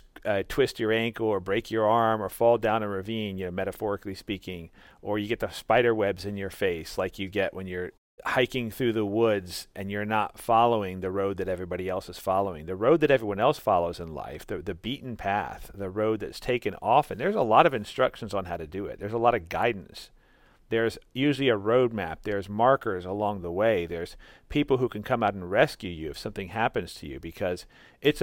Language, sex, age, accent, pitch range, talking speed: English, male, 40-59, American, 95-120 Hz, 225 wpm